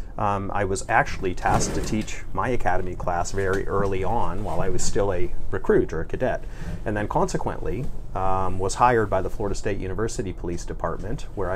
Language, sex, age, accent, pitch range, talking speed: English, male, 30-49, American, 90-105 Hz, 185 wpm